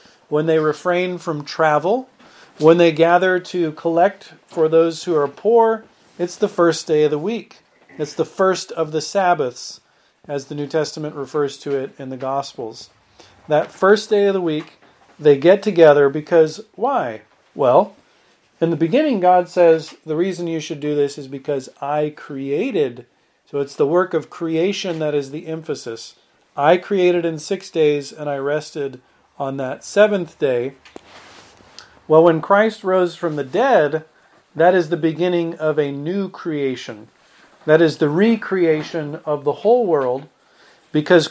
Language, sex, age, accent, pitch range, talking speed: English, male, 40-59, American, 150-180 Hz, 160 wpm